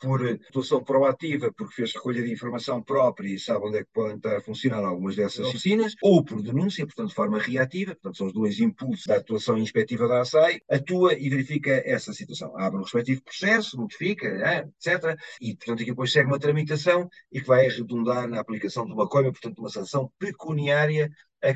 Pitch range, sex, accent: 130-175 Hz, male, Portuguese